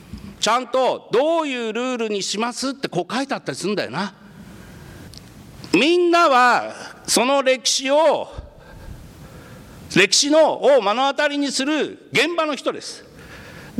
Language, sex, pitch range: Japanese, male, 255-330 Hz